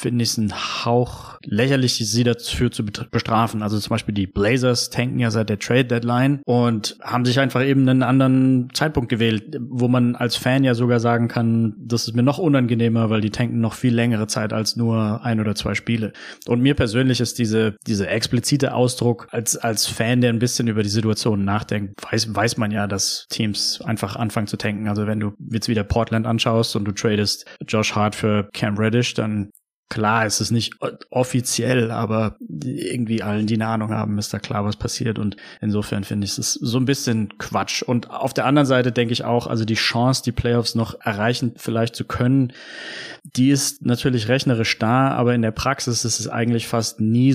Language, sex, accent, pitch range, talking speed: German, male, German, 110-125 Hz, 200 wpm